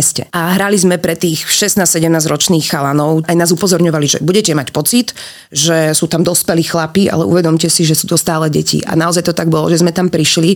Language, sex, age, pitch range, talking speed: Slovak, female, 30-49, 165-180 Hz, 210 wpm